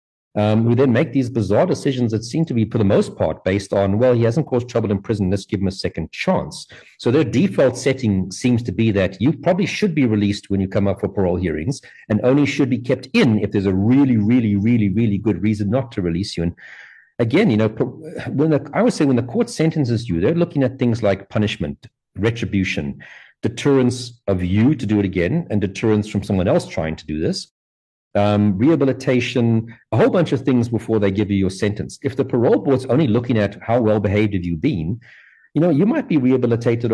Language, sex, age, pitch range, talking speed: English, male, 50-69, 100-130 Hz, 225 wpm